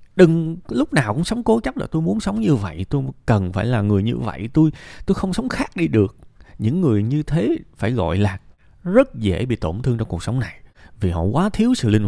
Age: 20-39